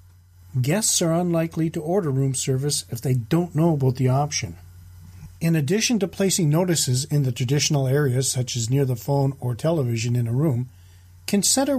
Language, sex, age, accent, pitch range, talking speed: English, male, 40-59, American, 110-170 Hz, 175 wpm